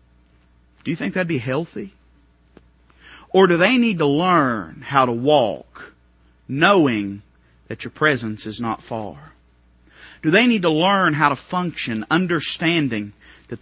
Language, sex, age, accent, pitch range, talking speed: English, male, 40-59, American, 115-180 Hz, 140 wpm